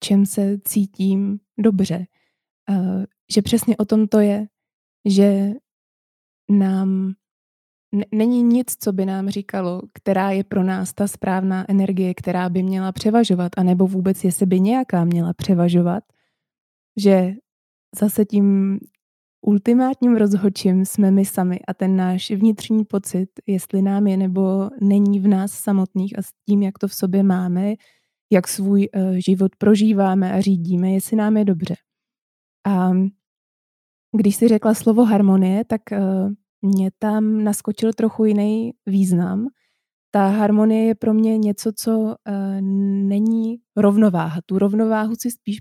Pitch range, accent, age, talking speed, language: 190-220 Hz, native, 20-39, 135 wpm, Czech